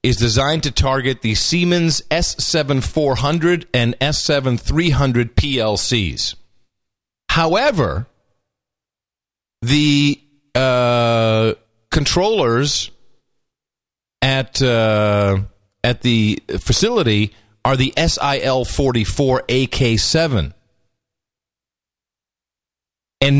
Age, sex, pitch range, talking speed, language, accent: 40-59, male, 105-145 Hz, 85 wpm, English, American